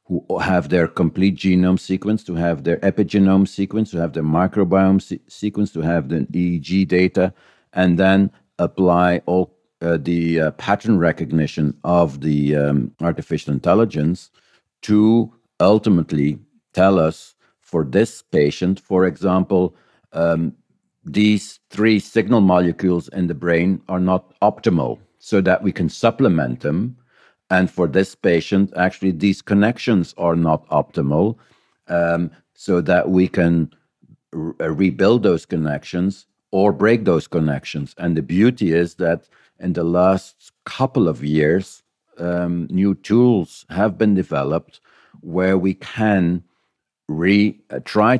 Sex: male